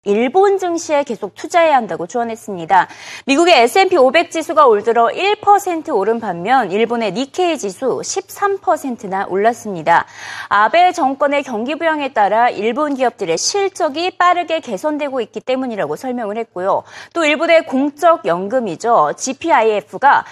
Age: 30-49